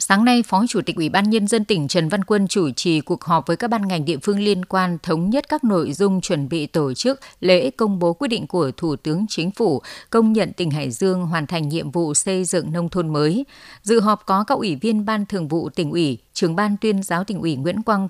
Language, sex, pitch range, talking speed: Vietnamese, female, 170-210 Hz, 255 wpm